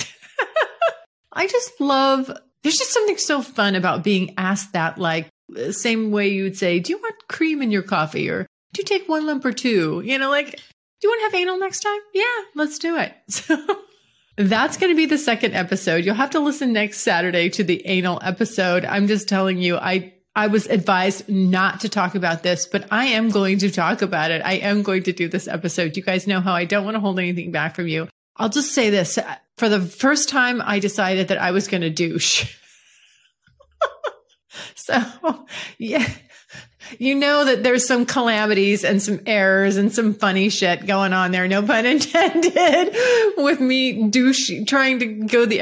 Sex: female